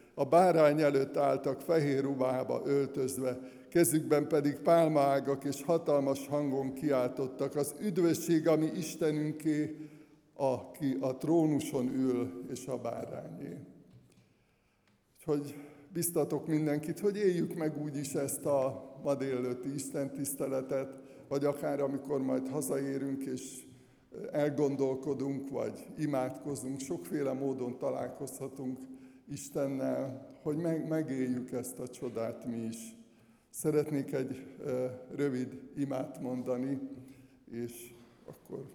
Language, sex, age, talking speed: Hungarian, male, 60-79, 105 wpm